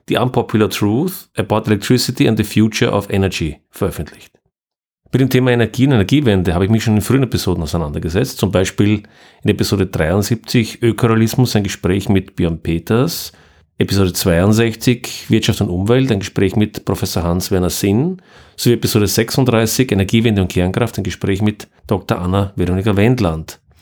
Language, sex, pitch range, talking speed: German, male, 95-120 Hz, 150 wpm